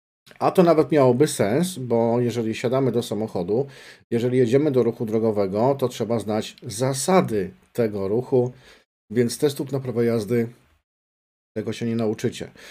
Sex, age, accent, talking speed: male, 50-69, native, 140 wpm